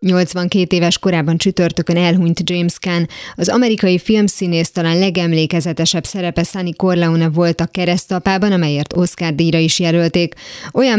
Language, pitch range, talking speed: Hungarian, 165-185 Hz, 130 wpm